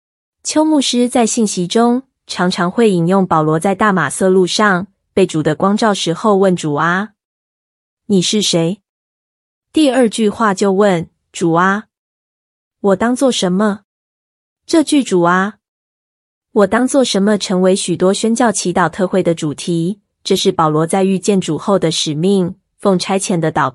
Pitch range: 175-215 Hz